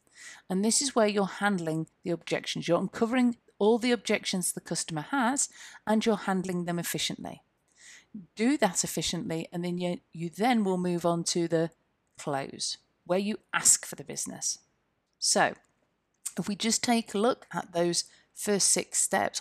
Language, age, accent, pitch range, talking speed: English, 40-59, British, 170-220 Hz, 165 wpm